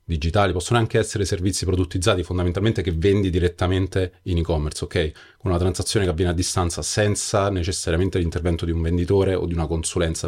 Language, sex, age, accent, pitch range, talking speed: Italian, male, 30-49, native, 85-100 Hz, 175 wpm